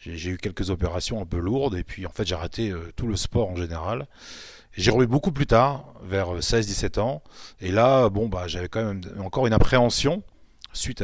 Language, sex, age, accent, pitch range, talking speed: French, male, 30-49, French, 95-120 Hz, 210 wpm